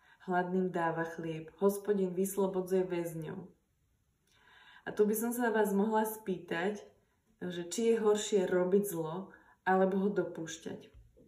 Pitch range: 165-200 Hz